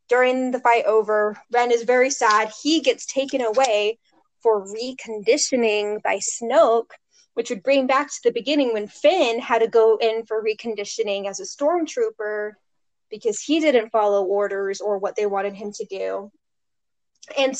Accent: American